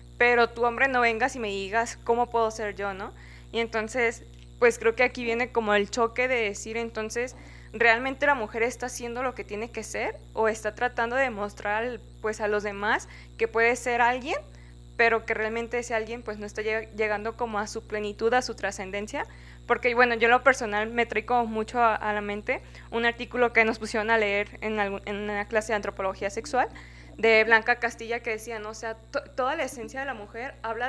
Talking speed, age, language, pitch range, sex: 210 wpm, 20-39, Spanish, 210-245 Hz, female